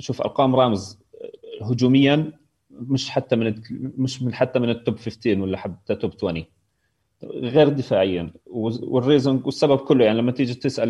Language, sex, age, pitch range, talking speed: Arabic, male, 30-49, 110-140 Hz, 140 wpm